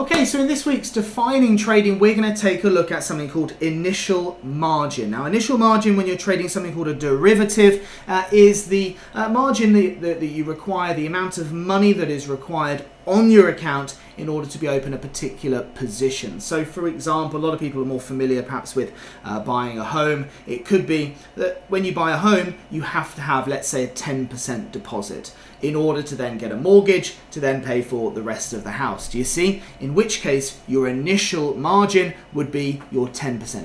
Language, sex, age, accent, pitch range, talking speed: English, male, 30-49, British, 135-195 Hz, 210 wpm